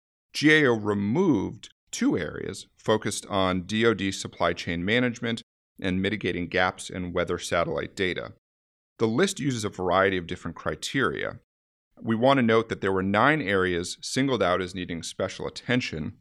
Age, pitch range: 40-59, 90-125 Hz